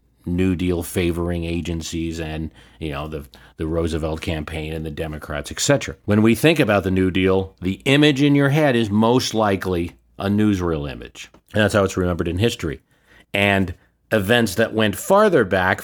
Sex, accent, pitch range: male, American, 90-120 Hz